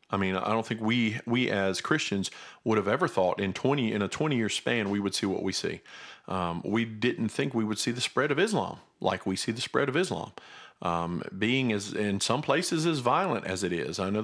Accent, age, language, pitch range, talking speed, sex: American, 40-59, English, 95-125 Hz, 240 wpm, male